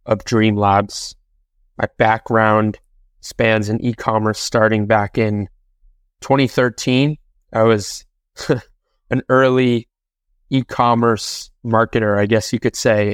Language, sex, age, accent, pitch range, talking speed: English, male, 20-39, American, 105-120 Hz, 115 wpm